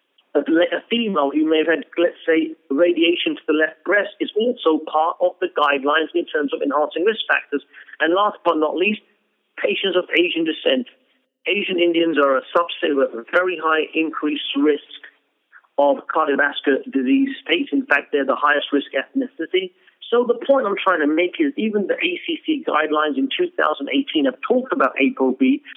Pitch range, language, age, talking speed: 155-255 Hz, English, 50-69, 170 wpm